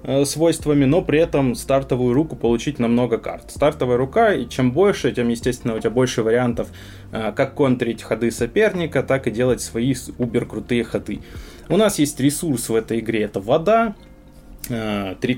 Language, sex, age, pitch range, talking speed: Russian, male, 20-39, 115-150 Hz, 160 wpm